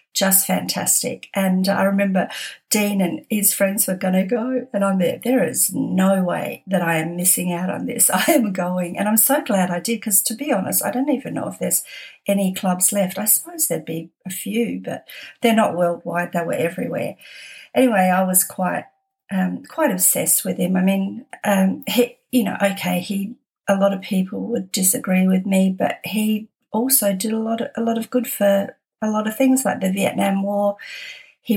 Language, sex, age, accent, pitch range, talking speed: English, female, 50-69, Australian, 190-235 Hz, 205 wpm